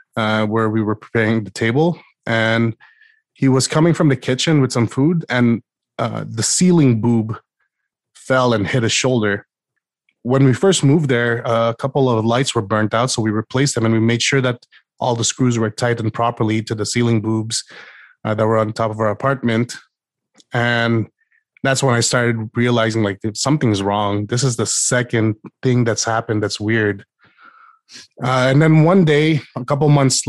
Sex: male